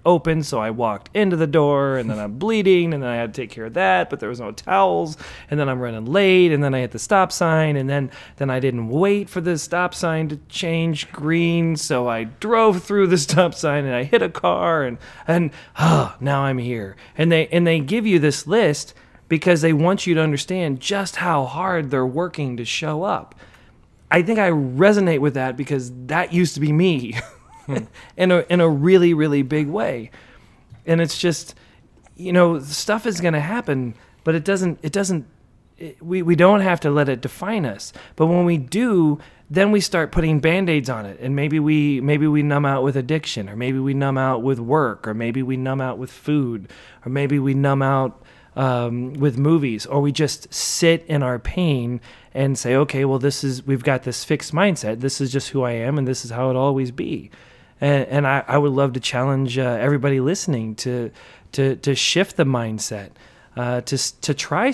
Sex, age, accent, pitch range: male, 30-49, American, 130-175 Hz